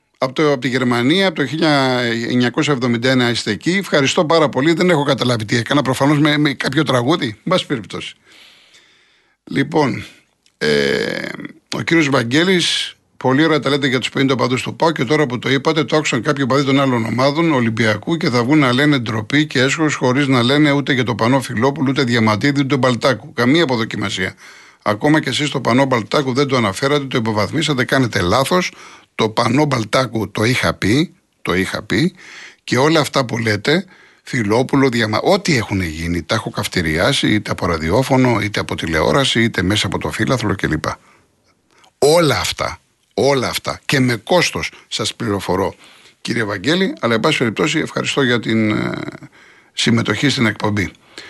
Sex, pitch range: male, 115-150 Hz